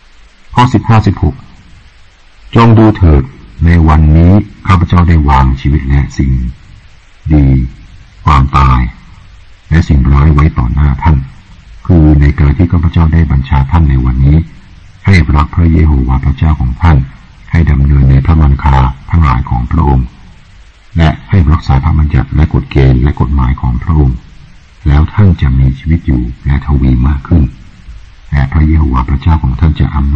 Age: 60-79